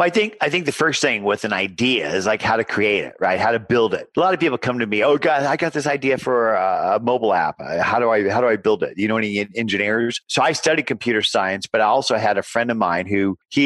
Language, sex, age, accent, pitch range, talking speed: English, male, 50-69, American, 100-125 Hz, 285 wpm